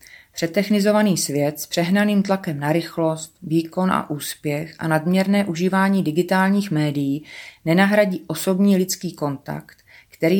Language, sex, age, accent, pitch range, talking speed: Czech, female, 30-49, native, 145-195 Hz, 115 wpm